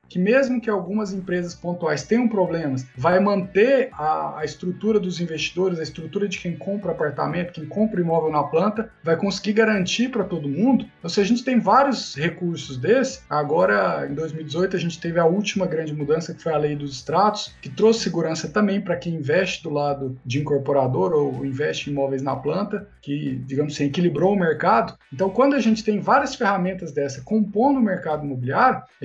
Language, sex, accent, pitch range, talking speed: Portuguese, male, Brazilian, 155-215 Hz, 190 wpm